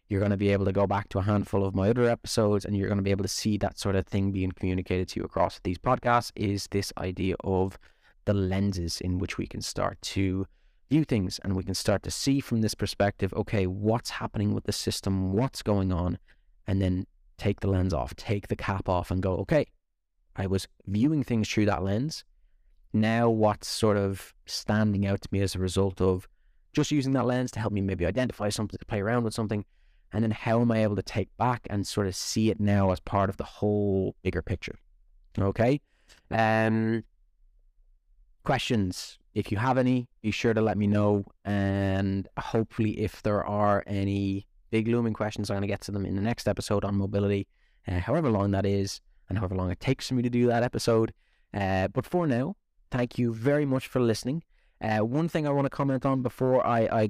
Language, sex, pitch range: English, male, 95-115 Hz